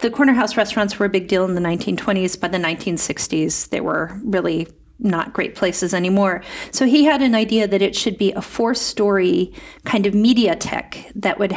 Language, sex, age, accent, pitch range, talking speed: Swedish, female, 40-59, American, 190-225 Hz, 195 wpm